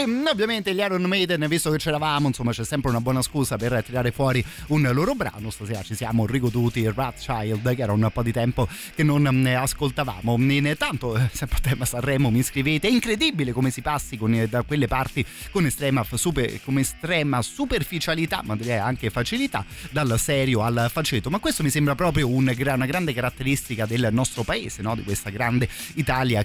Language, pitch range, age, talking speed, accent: Italian, 115-145 Hz, 30-49, 190 wpm, native